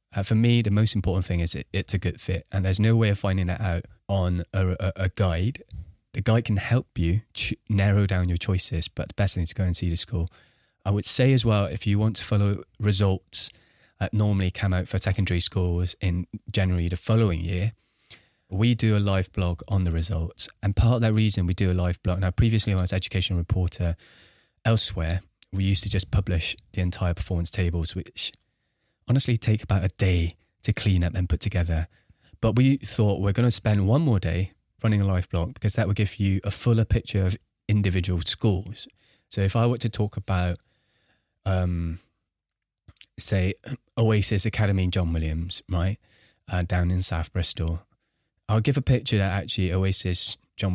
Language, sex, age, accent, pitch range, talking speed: English, male, 20-39, British, 90-110 Hz, 200 wpm